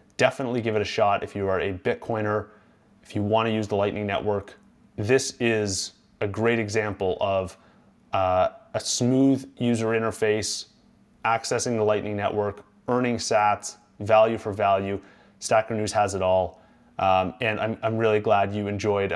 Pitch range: 100-115 Hz